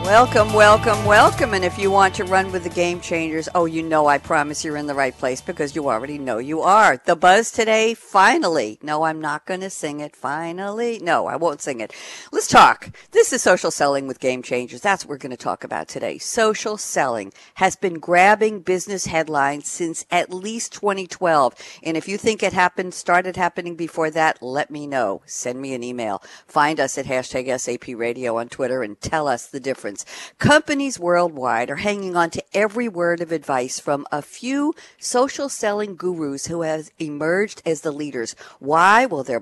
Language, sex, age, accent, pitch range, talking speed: English, female, 60-79, American, 140-195 Hz, 195 wpm